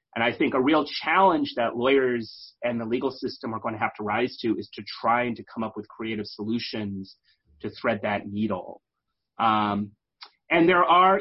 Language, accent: English, American